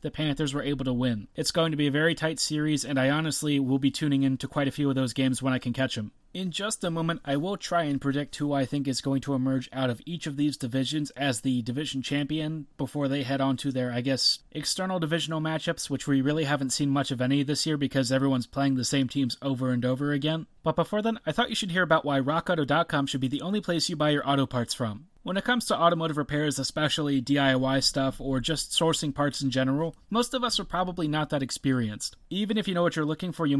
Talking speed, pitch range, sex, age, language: 255 wpm, 135-170 Hz, male, 30-49, English